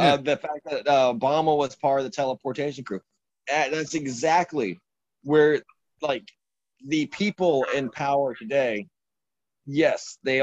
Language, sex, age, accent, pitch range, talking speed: English, male, 30-49, American, 125-150 Hz, 130 wpm